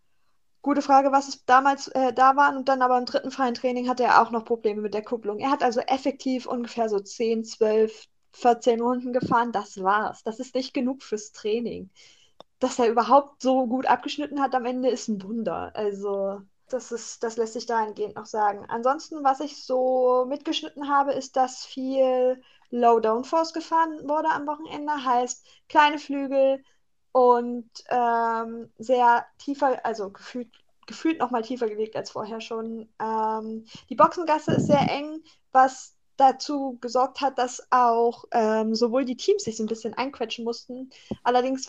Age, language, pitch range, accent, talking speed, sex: 20-39, German, 230-270 Hz, German, 170 wpm, female